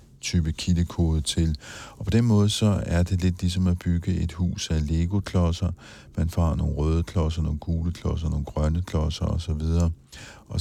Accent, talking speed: native, 175 wpm